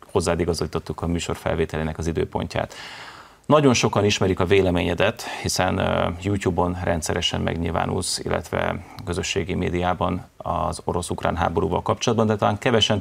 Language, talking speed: Hungarian, 120 wpm